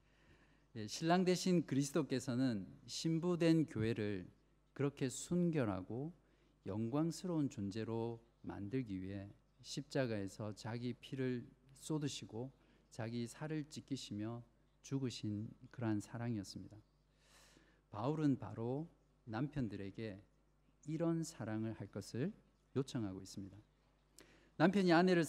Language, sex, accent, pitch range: Korean, male, native, 120-160 Hz